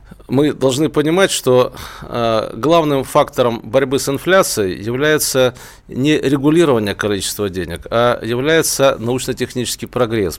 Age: 40-59